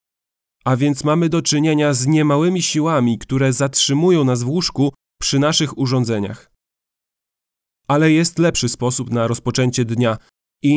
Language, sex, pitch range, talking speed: Polish, male, 125-155 Hz, 135 wpm